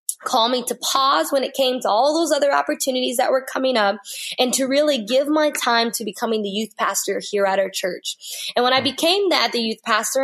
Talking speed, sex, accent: 230 wpm, female, American